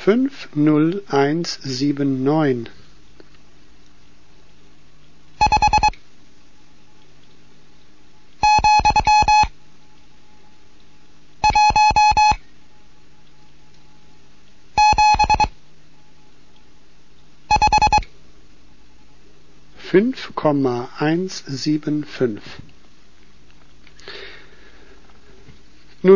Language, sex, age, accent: German, male, 60-79, German